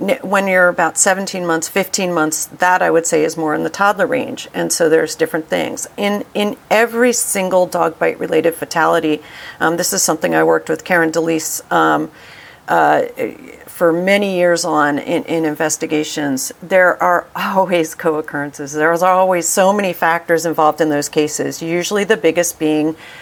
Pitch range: 165-200 Hz